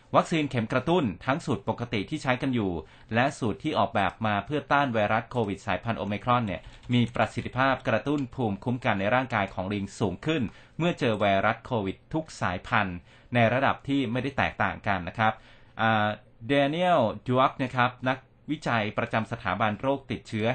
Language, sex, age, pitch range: Thai, male, 20-39, 110-130 Hz